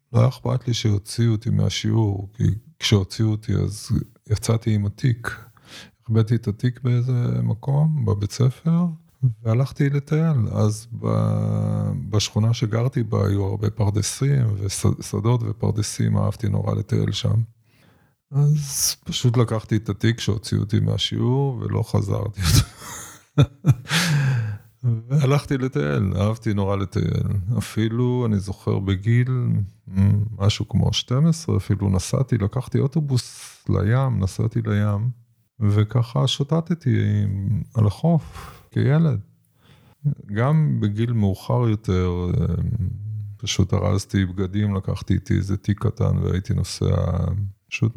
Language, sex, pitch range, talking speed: Hebrew, male, 105-125 Hz, 105 wpm